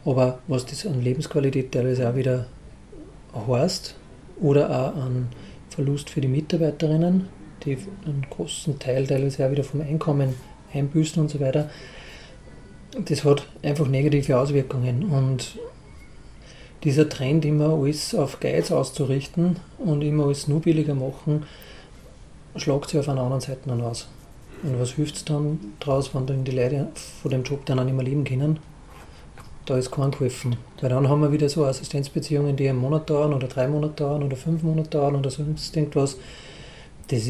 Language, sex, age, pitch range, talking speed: German, male, 40-59, 130-150 Hz, 165 wpm